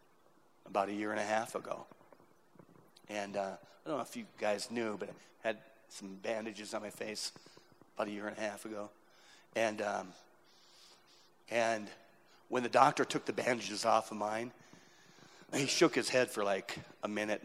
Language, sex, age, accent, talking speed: English, male, 40-59, American, 175 wpm